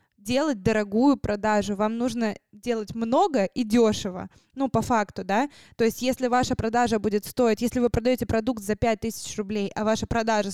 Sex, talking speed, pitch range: female, 170 wpm, 210-245 Hz